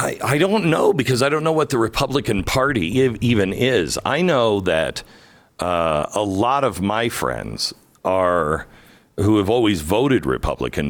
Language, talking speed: English, 155 wpm